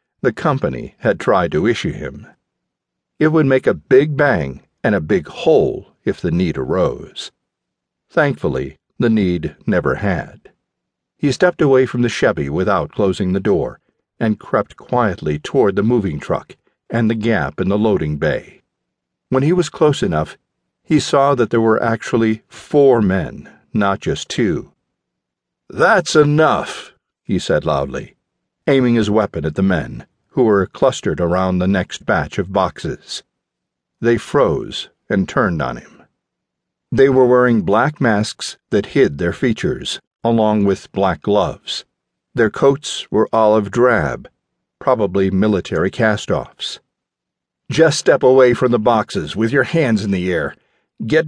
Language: English